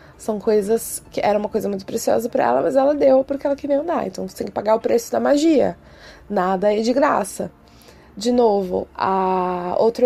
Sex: female